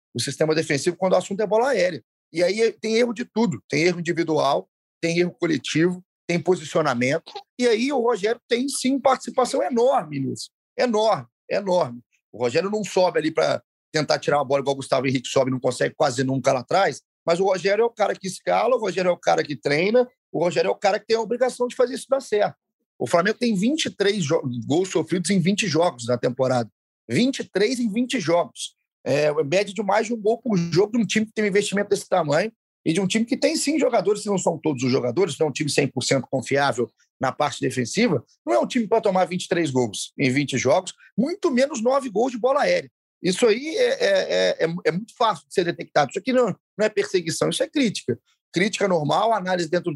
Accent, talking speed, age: Brazilian, 220 wpm, 40-59